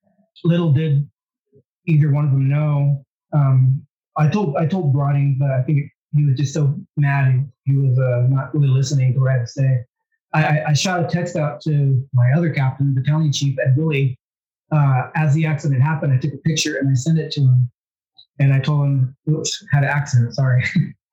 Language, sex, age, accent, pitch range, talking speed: English, male, 20-39, American, 135-155 Hz, 205 wpm